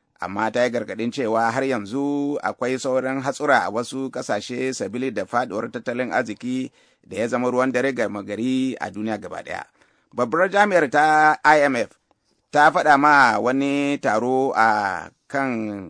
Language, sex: English, male